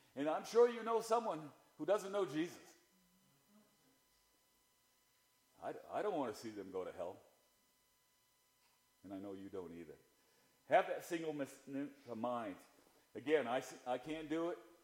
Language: English